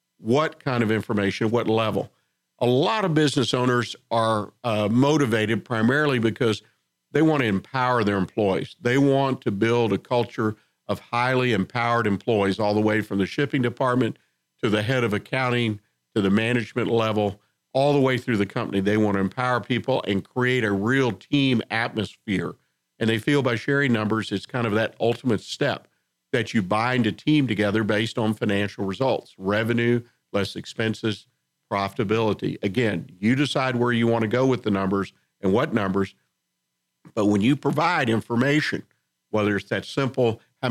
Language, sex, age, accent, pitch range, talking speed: English, male, 50-69, American, 105-125 Hz, 170 wpm